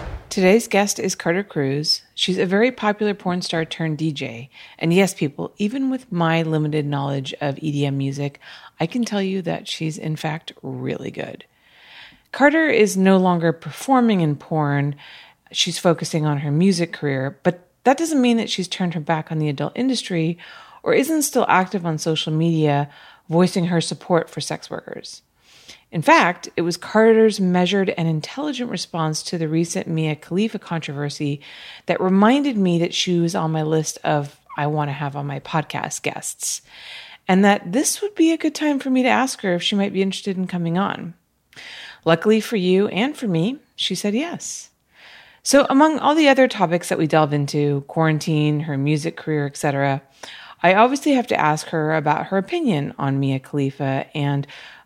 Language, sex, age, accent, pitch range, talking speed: English, female, 30-49, American, 150-205 Hz, 180 wpm